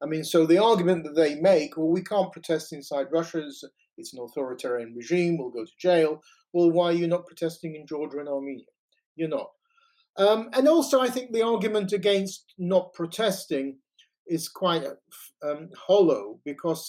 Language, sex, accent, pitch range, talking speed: English, male, British, 140-185 Hz, 175 wpm